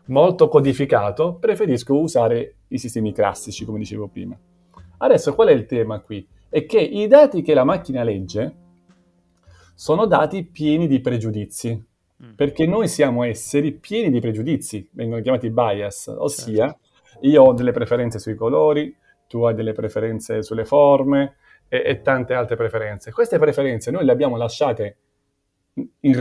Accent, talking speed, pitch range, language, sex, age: native, 145 wpm, 110-145 Hz, Italian, male, 30-49